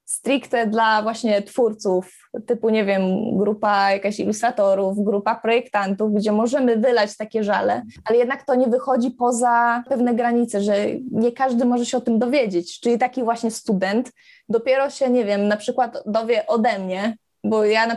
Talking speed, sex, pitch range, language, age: 165 wpm, female, 205-245 Hz, Polish, 20-39